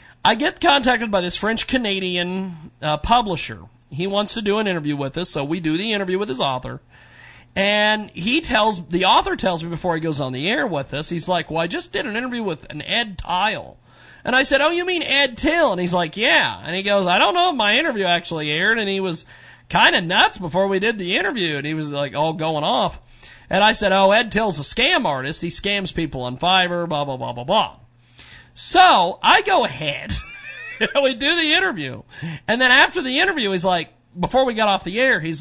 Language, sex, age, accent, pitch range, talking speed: English, male, 40-59, American, 150-220 Hz, 230 wpm